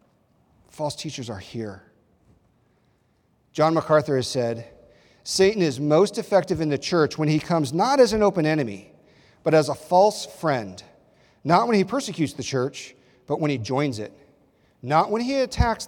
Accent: American